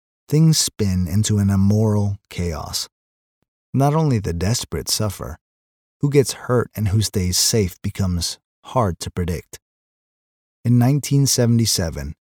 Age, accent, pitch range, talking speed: 30-49, American, 75-110 Hz, 115 wpm